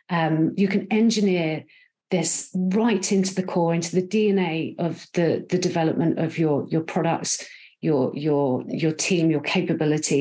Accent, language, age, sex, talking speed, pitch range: British, English, 40-59, female, 155 wpm, 155-195 Hz